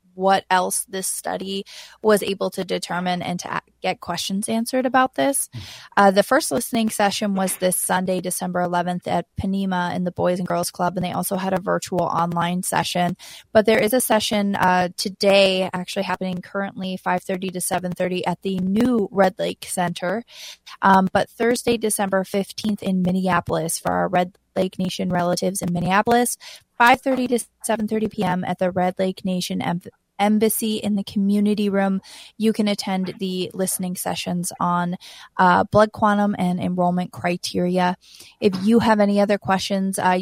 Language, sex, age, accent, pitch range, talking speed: English, female, 20-39, American, 180-200 Hz, 165 wpm